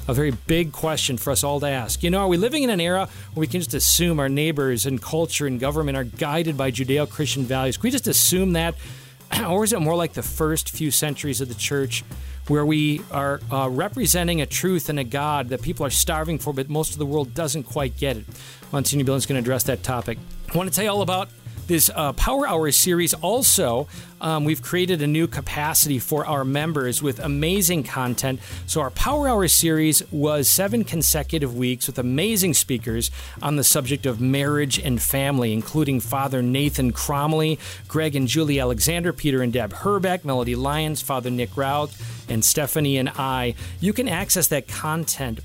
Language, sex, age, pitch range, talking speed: English, male, 40-59, 130-165 Hz, 200 wpm